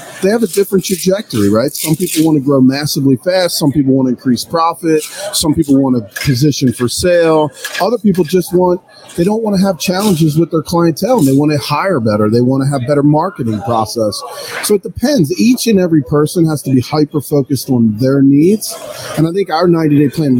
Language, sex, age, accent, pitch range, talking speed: English, male, 40-59, American, 130-165 Hz, 210 wpm